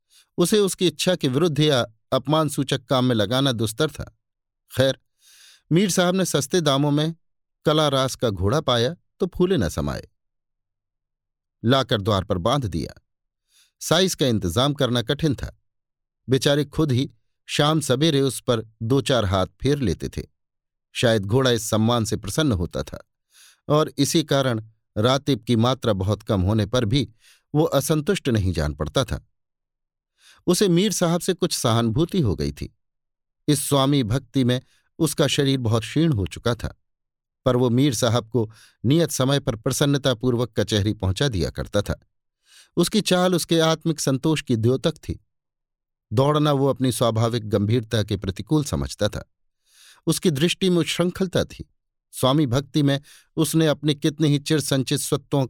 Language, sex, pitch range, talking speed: Hindi, male, 110-150 Hz, 155 wpm